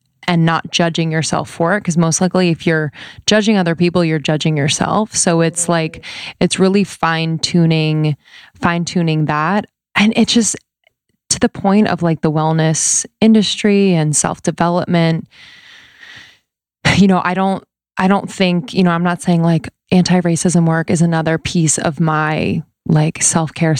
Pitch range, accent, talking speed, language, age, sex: 160-185 Hz, American, 160 wpm, English, 20-39, female